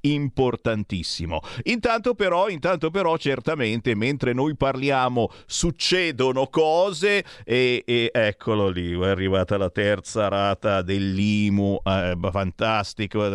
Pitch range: 110-175 Hz